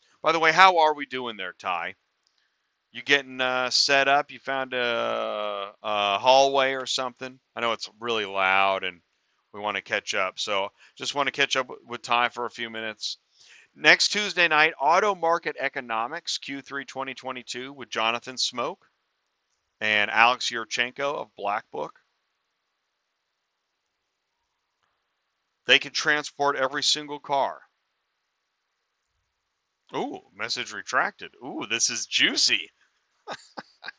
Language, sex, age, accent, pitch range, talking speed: English, male, 40-59, American, 115-150 Hz, 130 wpm